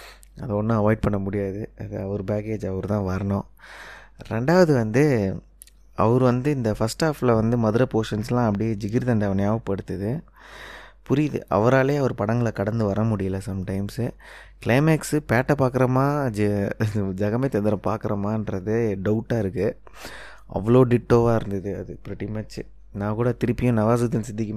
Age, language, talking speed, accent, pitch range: 20-39, Tamil, 120 wpm, native, 100-120 Hz